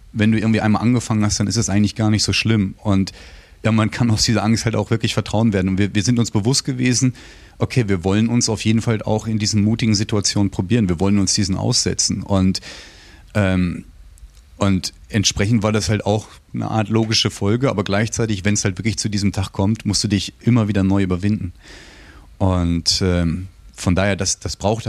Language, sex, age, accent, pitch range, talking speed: German, male, 30-49, German, 95-110 Hz, 210 wpm